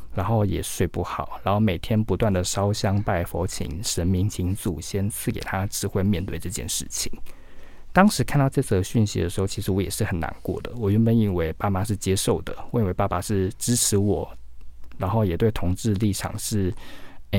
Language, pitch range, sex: Chinese, 90-110 Hz, male